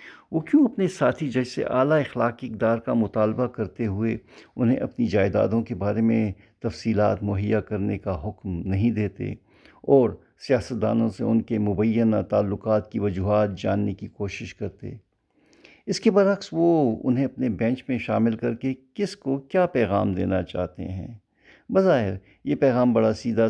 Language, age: Urdu, 50-69